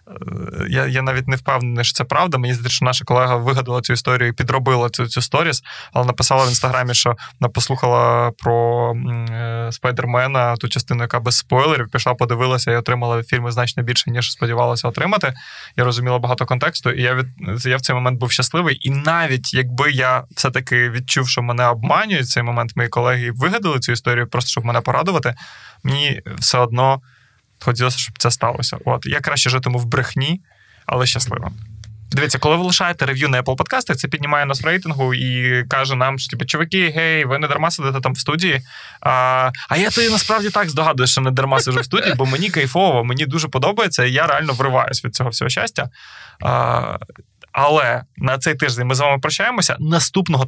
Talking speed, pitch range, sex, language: 185 wpm, 120-145 Hz, male, Ukrainian